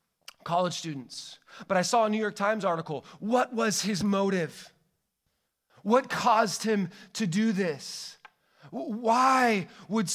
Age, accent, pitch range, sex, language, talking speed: 30-49, American, 135-185 Hz, male, English, 130 wpm